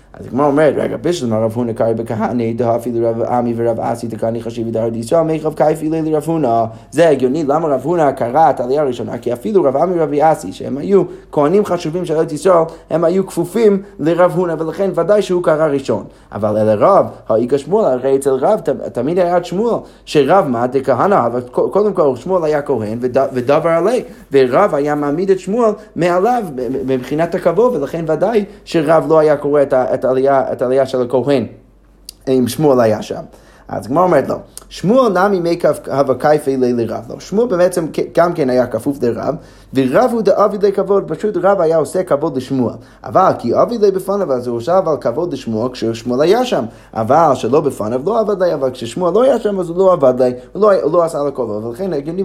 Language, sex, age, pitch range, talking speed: Hebrew, male, 30-49, 125-185 Hz, 125 wpm